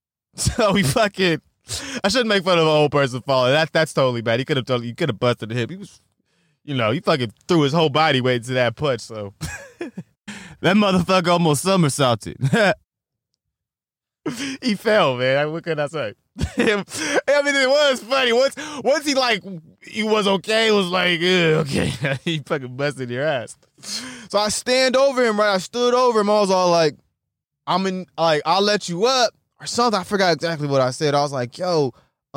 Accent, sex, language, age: American, male, English, 20-39